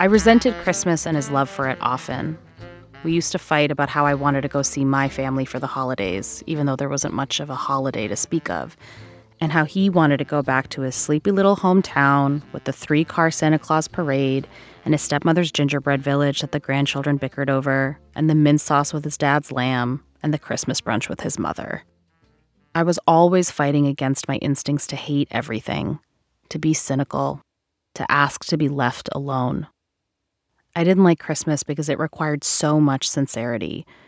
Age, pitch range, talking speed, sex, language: 30-49, 130-160 Hz, 190 wpm, female, English